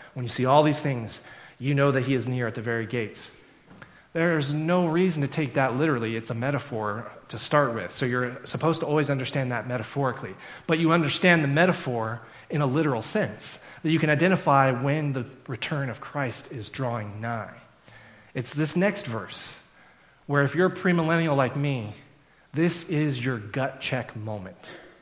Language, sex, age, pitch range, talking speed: English, male, 30-49, 120-160 Hz, 175 wpm